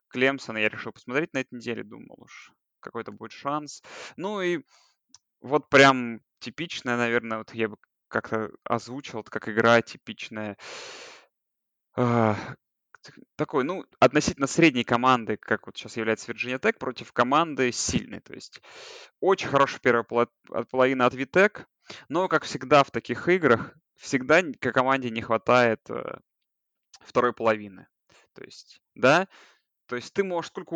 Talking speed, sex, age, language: 135 wpm, male, 20-39, Russian